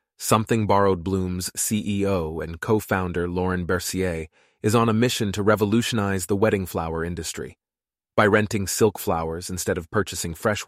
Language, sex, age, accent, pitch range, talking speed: English, male, 30-49, American, 90-130 Hz, 145 wpm